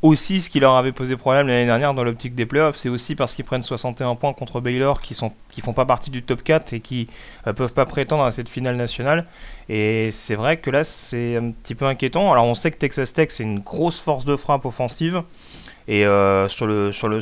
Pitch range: 115-145 Hz